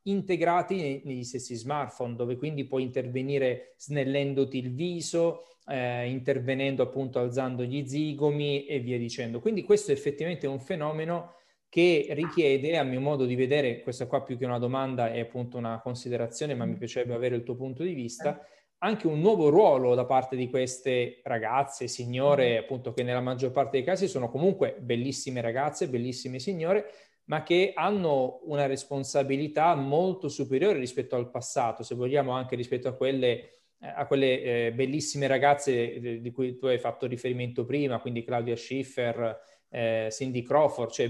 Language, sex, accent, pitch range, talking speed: Italian, male, native, 125-150 Hz, 160 wpm